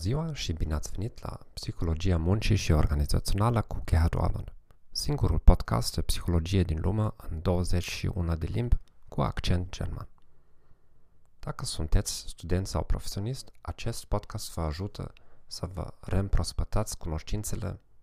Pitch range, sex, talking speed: 85-110 Hz, male, 130 wpm